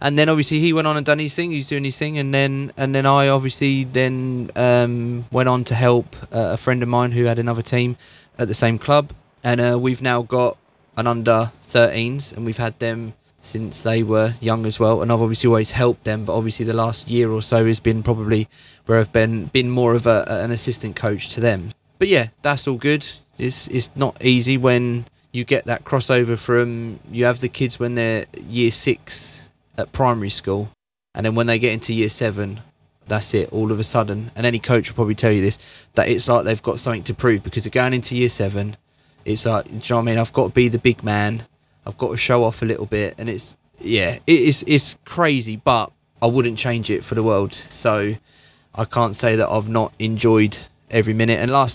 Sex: male